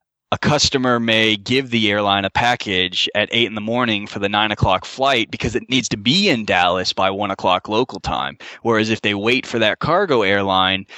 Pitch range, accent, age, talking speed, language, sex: 100-120 Hz, American, 20-39, 210 wpm, English, male